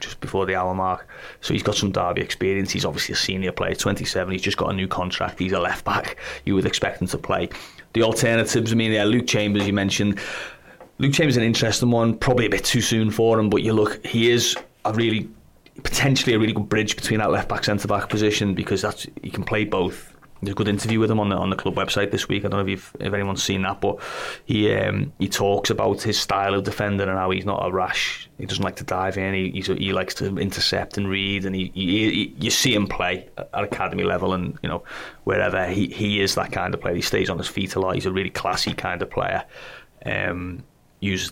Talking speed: 250 wpm